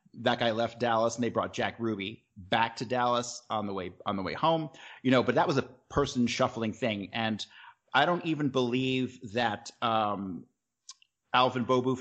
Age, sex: 30-49, male